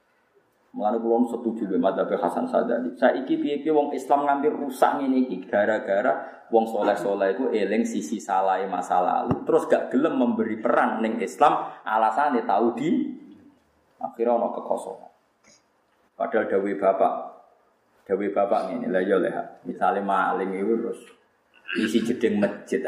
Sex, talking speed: male, 135 wpm